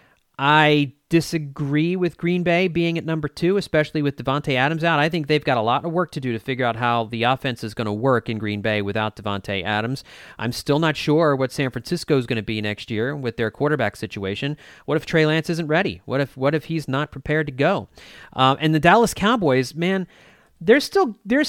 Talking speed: 225 wpm